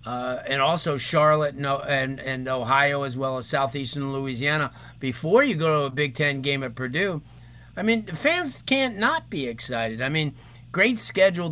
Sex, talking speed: male, 180 wpm